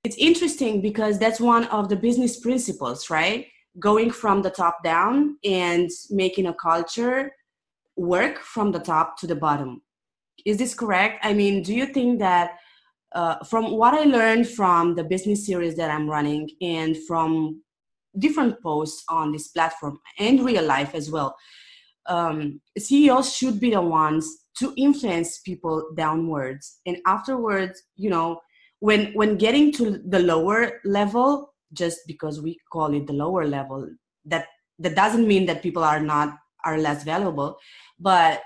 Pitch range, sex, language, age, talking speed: 160-230 Hz, female, English, 20-39, 155 wpm